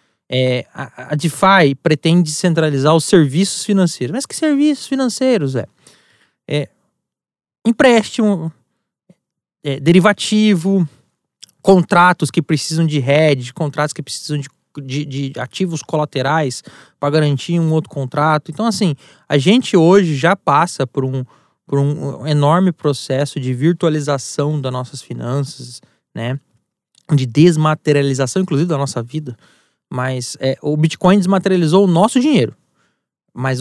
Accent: Brazilian